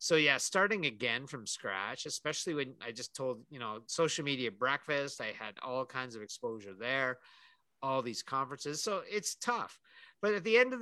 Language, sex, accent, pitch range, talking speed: English, male, American, 115-150 Hz, 190 wpm